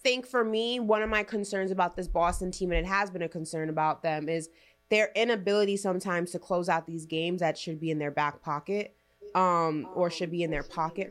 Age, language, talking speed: 20-39, English, 225 wpm